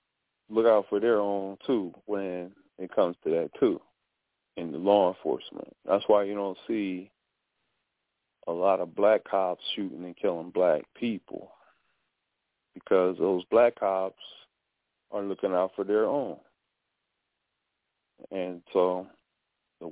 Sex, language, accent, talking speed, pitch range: male, English, American, 135 wpm, 100-115 Hz